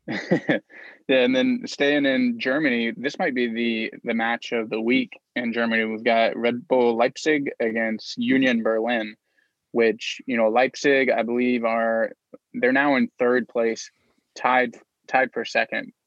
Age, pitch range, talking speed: 20-39, 115-140 Hz, 155 wpm